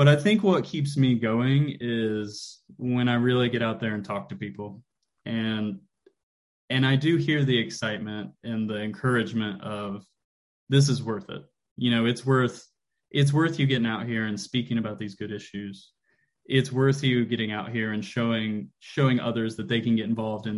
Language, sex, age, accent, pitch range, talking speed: English, male, 20-39, American, 105-135 Hz, 190 wpm